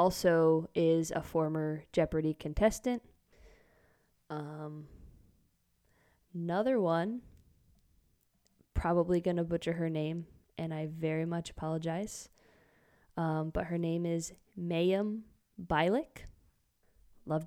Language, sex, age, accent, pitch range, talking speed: English, female, 20-39, American, 155-185 Hz, 95 wpm